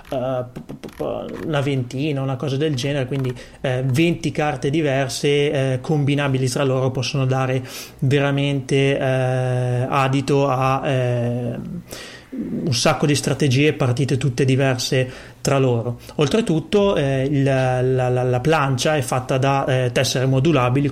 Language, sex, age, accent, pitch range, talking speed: Italian, male, 30-49, native, 130-145 Hz, 125 wpm